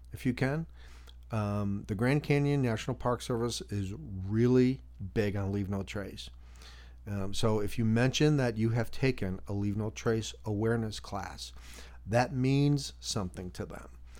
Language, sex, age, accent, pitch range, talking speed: English, male, 40-59, American, 95-115 Hz, 155 wpm